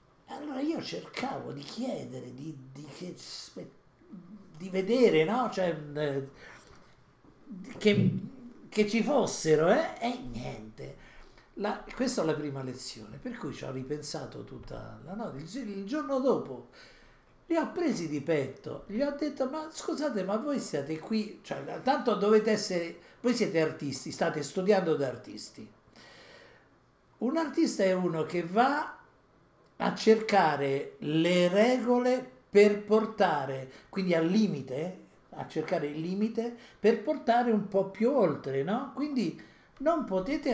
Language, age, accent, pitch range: Italian, 60-79, native, 150-235 Hz